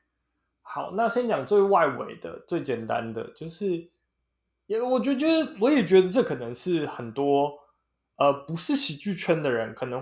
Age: 20-39